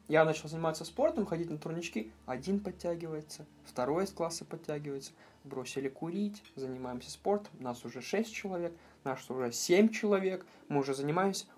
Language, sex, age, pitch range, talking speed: Russian, male, 20-39, 125-160 Hz, 145 wpm